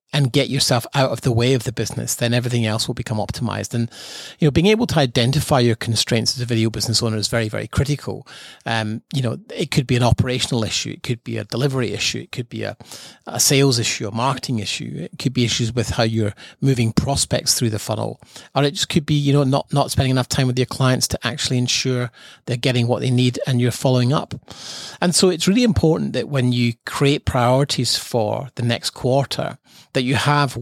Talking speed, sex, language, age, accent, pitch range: 225 wpm, male, English, 30-49, British, 115-135 Hz